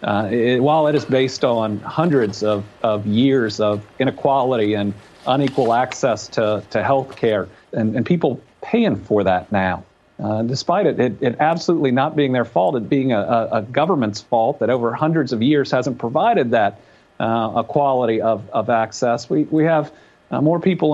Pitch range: 120-150 Hz